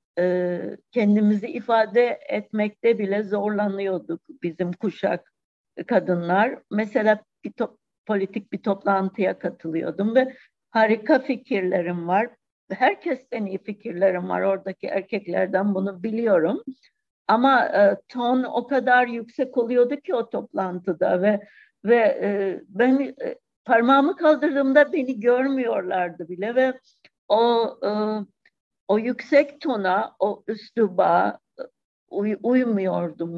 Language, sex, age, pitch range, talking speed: Turkish, female, 60-79, 195-255 Hz, 100 wpm